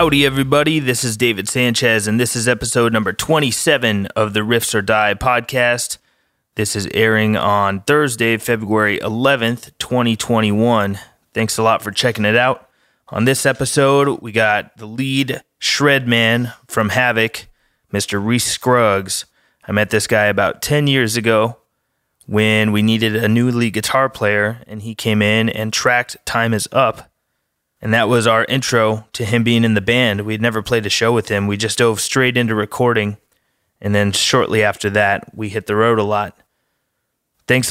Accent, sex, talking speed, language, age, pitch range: American, male, 170 wpm, English, 20-39, 110-125 Hz